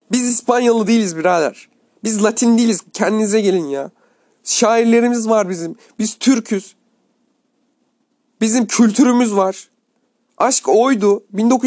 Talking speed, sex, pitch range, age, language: 105 wpm, male, 190-235 Hz, 40-59, Turkish